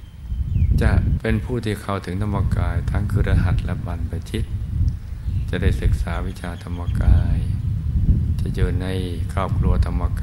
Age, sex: 60-79, male